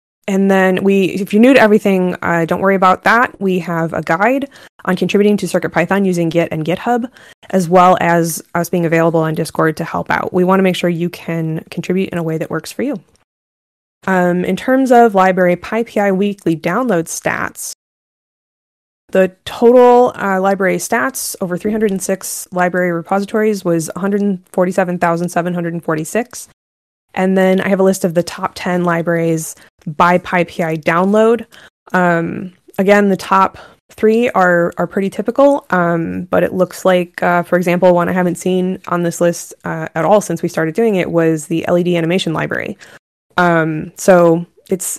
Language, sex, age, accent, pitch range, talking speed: English, female, 20-39, American, 170-195 Hz, 165 wpm